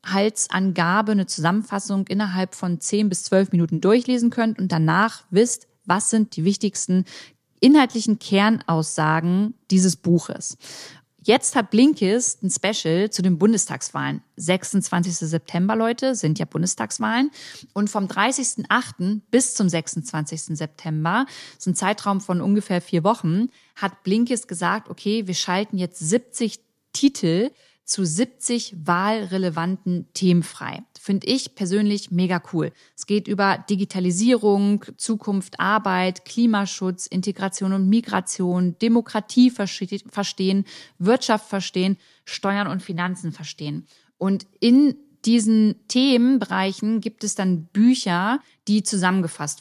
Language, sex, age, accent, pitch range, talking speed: German, female, 30-49, German, 180-220 Hz, 120 wpm